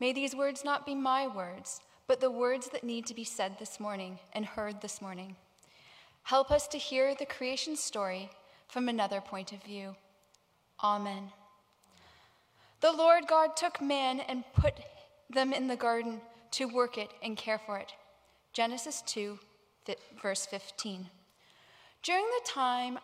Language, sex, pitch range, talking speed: English, female, 205-290 Hz, 155 wpm